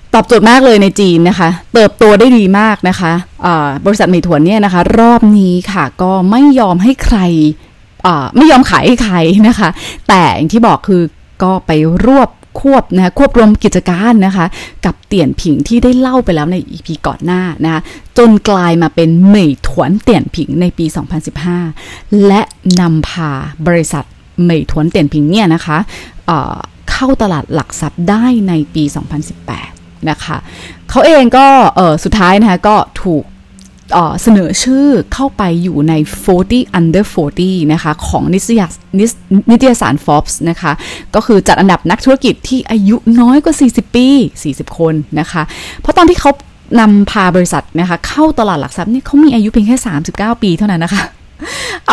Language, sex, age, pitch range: Thai, female, 20-39, 165-225 Hz